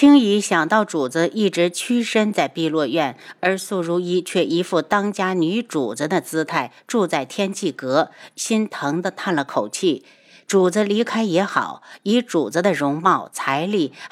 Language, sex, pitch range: Chinese, female, 165-225 Hz